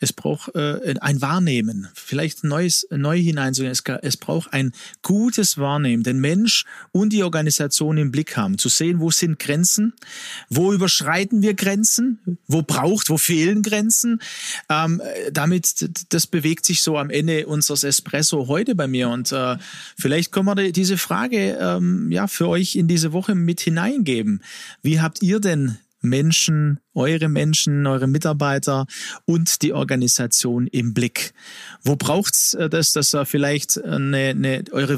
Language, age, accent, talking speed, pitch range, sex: German, 40-59, German, 155 wpm, 145-185 Hz, male